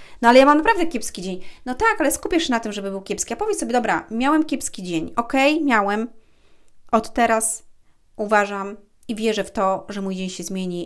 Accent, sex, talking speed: native, female, 215 wpm